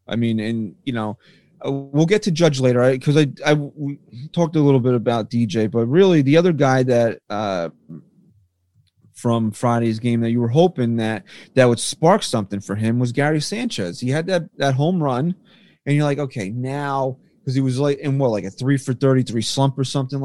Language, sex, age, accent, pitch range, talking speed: English, male, 30-49, American, 125-155 Hz, 210 wpm